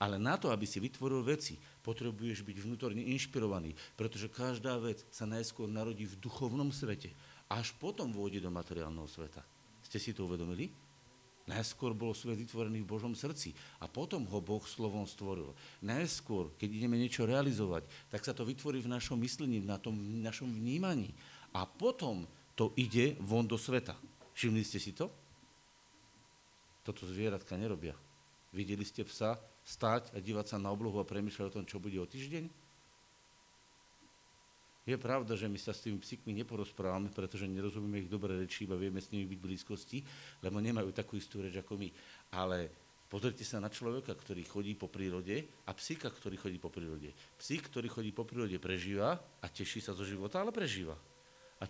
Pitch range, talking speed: 100-120 Hz, 170 wpm